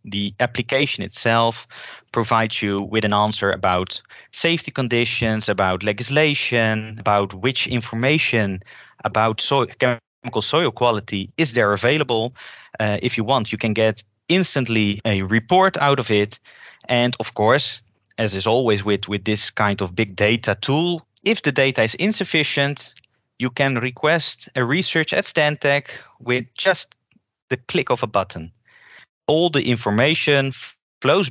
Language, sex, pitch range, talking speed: English, male, 105-140 Hz, 140 wpm